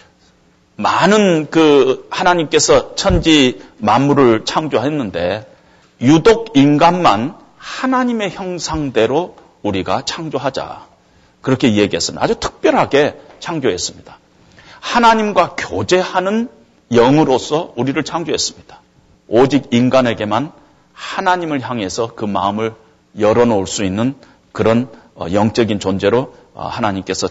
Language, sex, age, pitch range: Korean, male, 40-59, 110-185 Hz